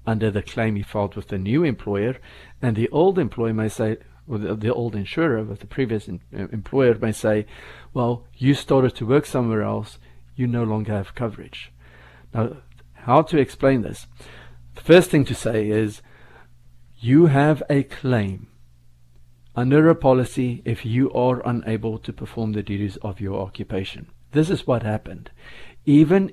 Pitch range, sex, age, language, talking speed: 100-135 Hz, male, 50-69, English, 165 wpm